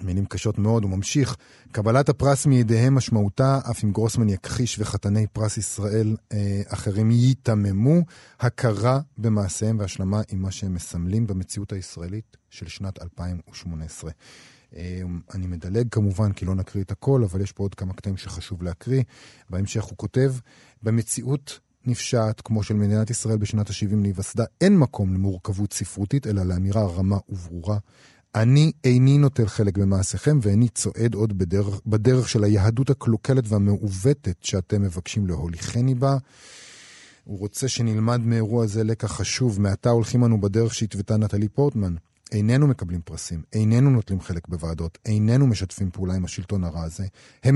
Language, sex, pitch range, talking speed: Hebrew, male, 95-120 Hz, 145 wpm